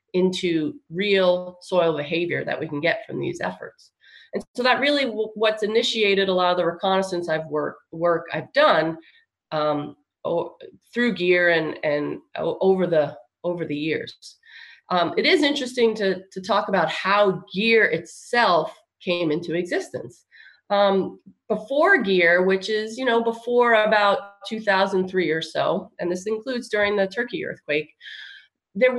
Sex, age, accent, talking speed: female, 30-49, American, 145 wpm